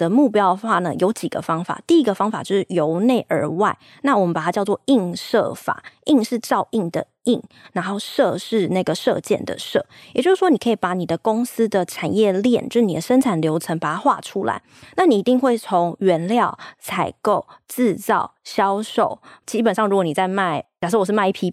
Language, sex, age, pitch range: Chinese, female, 20-39, 175-225 Hz